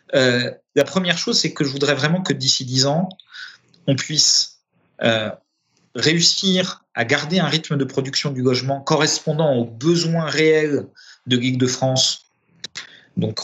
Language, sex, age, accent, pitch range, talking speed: French, male, 40-59, French, 125-165 Hz, 145 wpm